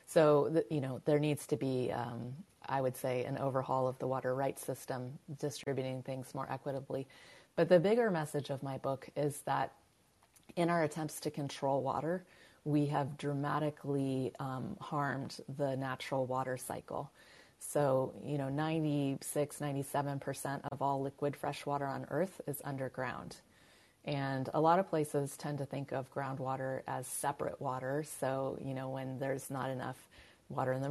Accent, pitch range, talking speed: American, 135-150 Hz, 160 wpm